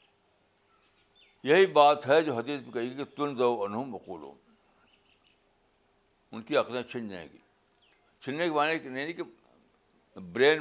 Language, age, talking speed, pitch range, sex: Urdu, 60-79, 135 wpm, 110-150 Hz, male